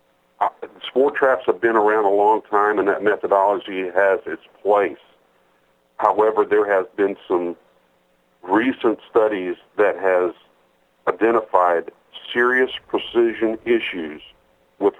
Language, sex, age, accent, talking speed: English, male, 50-69, American, 115 wpm